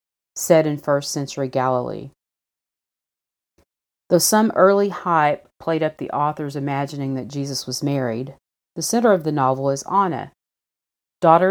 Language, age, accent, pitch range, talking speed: English, 40-59, American, 140-175 Hz, 130 wpm